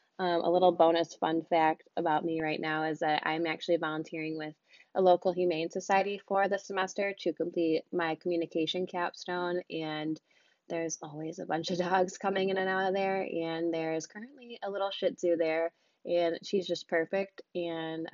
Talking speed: 180 wpm